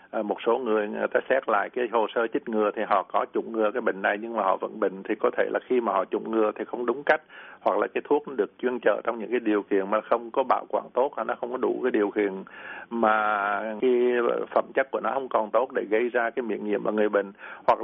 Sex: male